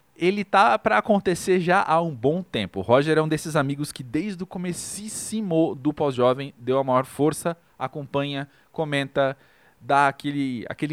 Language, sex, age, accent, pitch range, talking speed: Portuguese, male, 20-39, Brazilian, 130-185 Hz, 160 wpm